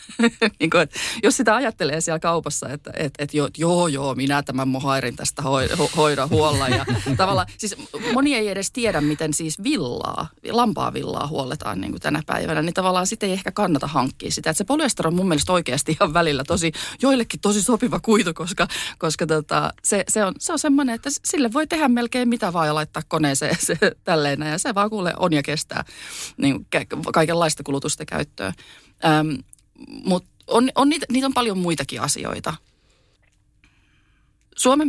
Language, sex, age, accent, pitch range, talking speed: Finnish, female, 30-49, native, 140-190 Hz, 170 wpm